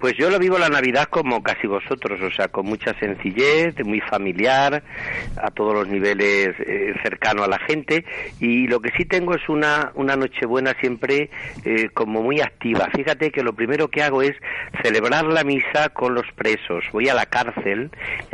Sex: male